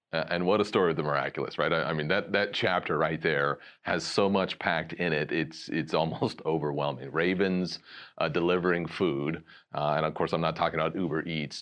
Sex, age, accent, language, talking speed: male, 40-59, American, English, 205 wpm